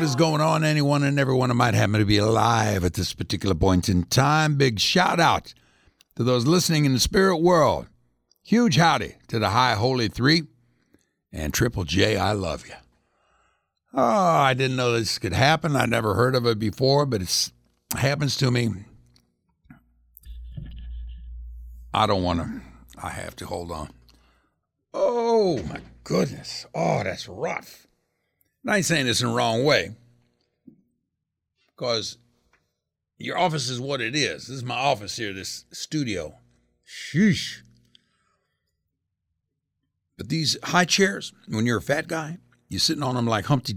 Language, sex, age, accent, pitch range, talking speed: English, male, 60-79, American, 90-155 Hz, 155 wpm